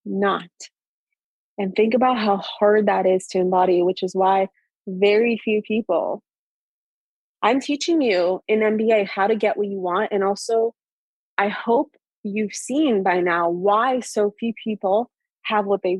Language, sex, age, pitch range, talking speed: English, female, 20-39, 195-230 Hz, 160 wpm